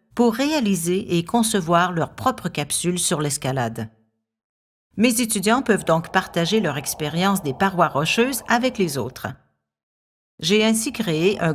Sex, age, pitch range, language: female, 50-69, 155-225 Hz, French